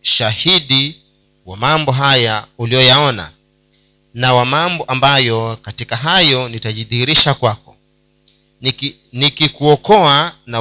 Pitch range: 110-145 Hz